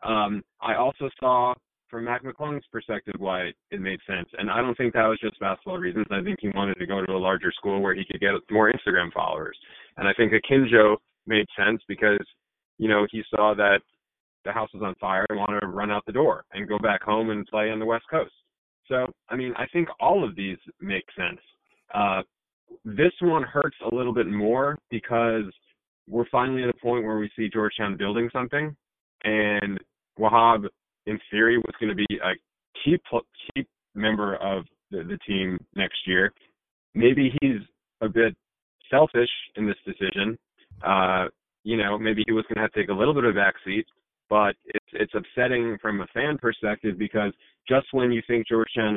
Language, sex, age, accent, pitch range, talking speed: English, male, 30-49, American, 105-120 Hz, 195 wpm